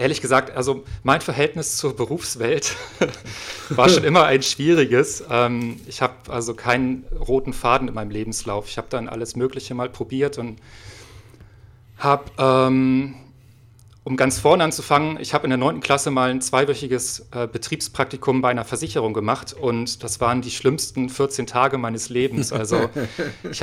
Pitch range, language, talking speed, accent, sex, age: 115-135 Hz, German, 155 wpm, German, male, 40-59